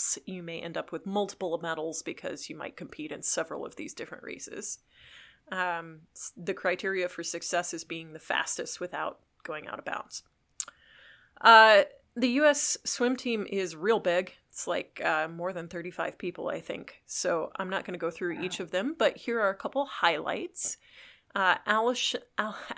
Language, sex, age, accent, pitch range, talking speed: English, female, 30-49, American, 175-235 Hz, 175 wpm